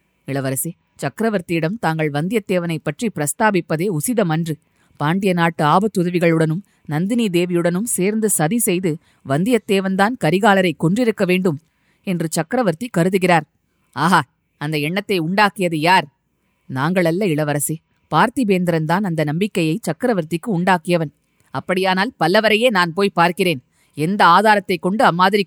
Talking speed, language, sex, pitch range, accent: 100 wpm, Tamil, female, 165-205 Hz, native